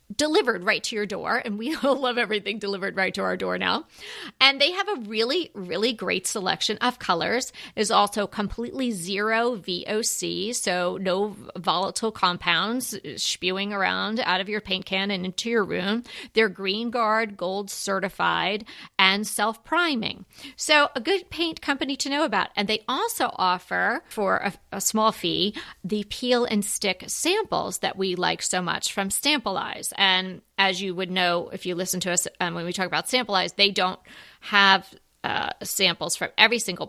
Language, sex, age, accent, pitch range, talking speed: English, female, 40-59, American, 185-240 Hz, 175 wpm